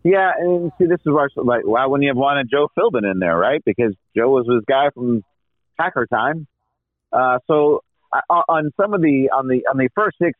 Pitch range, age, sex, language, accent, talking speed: 115-140 Hz, 30-49, male, English, American, 220 wpm